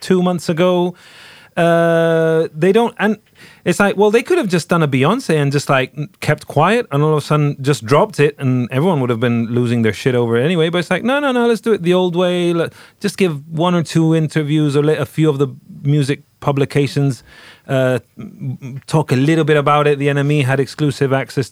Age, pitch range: 30-49, 120-155 Hz